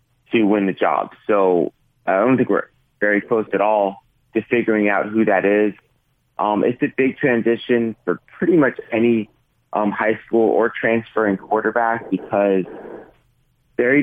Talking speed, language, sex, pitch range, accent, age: 155 wpm, English, male, 100-115 Hz, American, 30-49